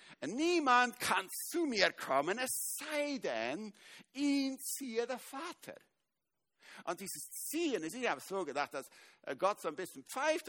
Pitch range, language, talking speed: 185-280 Hz, German, 160 wpm